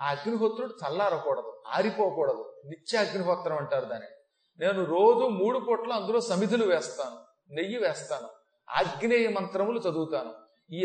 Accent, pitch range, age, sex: native, 160-230 Hz, 40-59, male